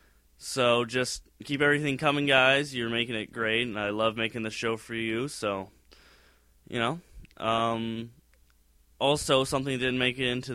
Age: 20-39